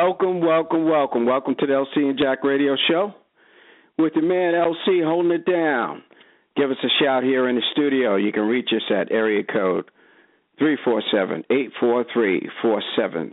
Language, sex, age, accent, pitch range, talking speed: English, male, 50-69, American, 120-165 Hz, 195 wpm